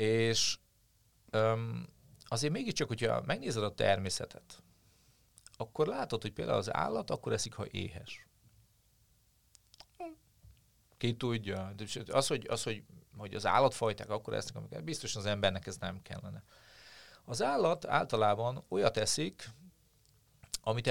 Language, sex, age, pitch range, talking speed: Hungarian, male, 40-59, 100-120 Hz, 120 wpm